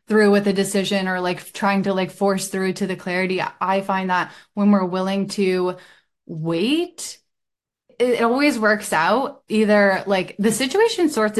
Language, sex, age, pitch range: English, female, 10-29, 180-200 Hz